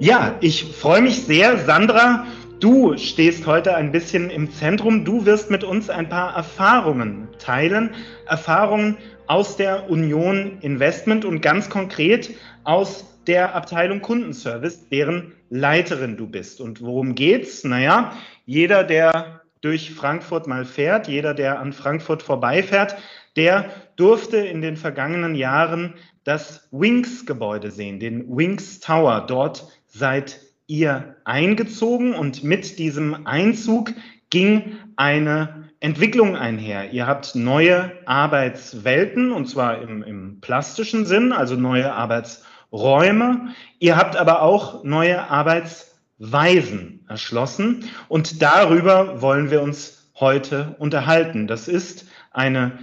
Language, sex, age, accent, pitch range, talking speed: German, male, 40-59, German, 140-195 Hz, 120 wpm